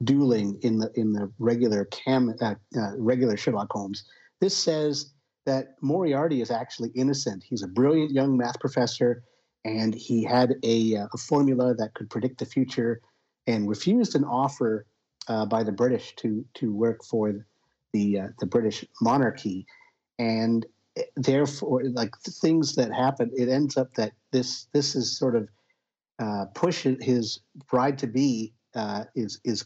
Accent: American